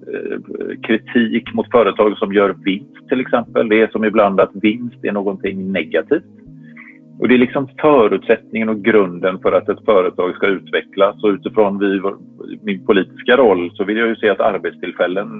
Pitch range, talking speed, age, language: 100-125 Hz, 165 wpm, 40-59, Swedish